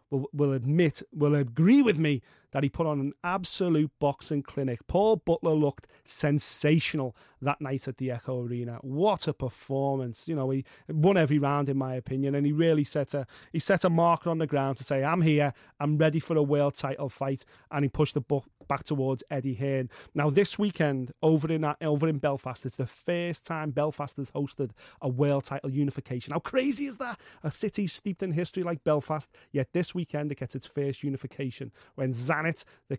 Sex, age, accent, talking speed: male, 30-49, British, 200 wpm